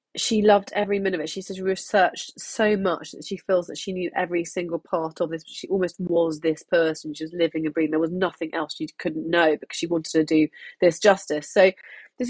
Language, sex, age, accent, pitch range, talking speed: English, female, 30-49, British, 160-200 Hz, 235 wpm